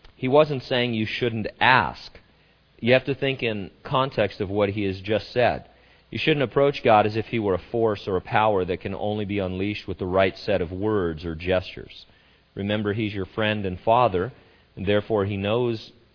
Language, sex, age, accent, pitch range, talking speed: English, male, 40-59, American, 95-110 Hz, 200 wpm